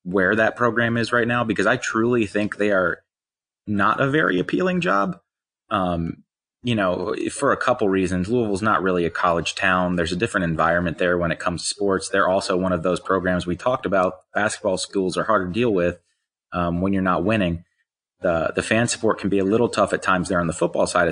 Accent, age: American, 30-49